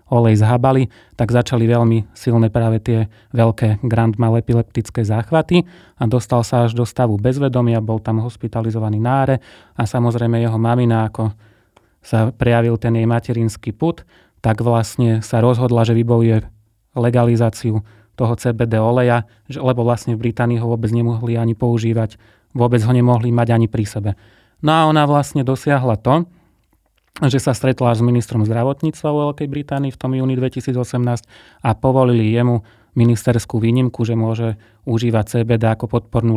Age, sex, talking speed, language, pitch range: 30-49, male, 150 wpm, Slovak, 110-125 Hz